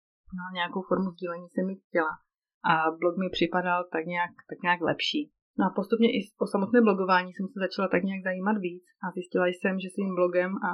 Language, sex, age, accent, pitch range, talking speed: Czech, female, 30-49, native, 170-195 Hz, 200 wpm